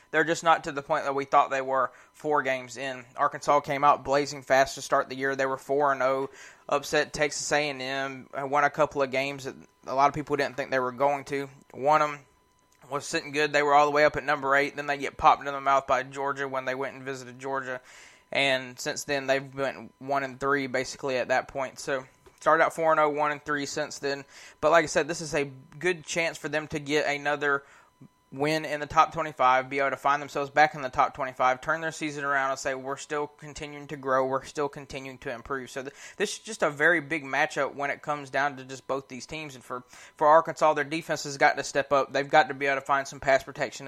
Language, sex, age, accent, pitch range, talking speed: English, male, 20-39, American, 135-150 Hz, 240 wpm